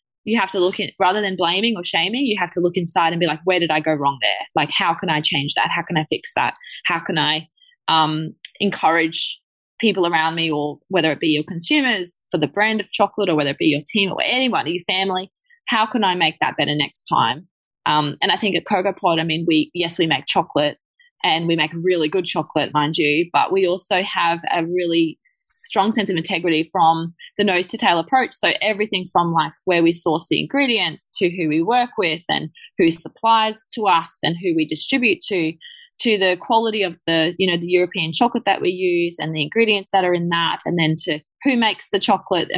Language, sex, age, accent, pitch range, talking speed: English, female, 20-39, Australian, 160-200 Hz, 225 wpm